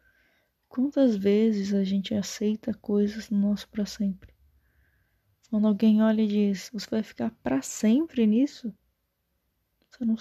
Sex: female